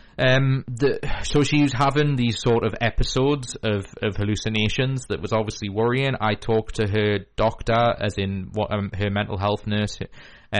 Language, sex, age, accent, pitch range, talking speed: English, male, 20-39, British, 100-115 Hz, 170 wpm